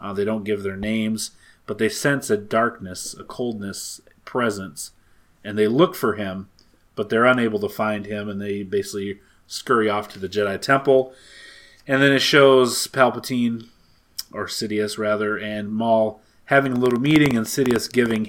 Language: English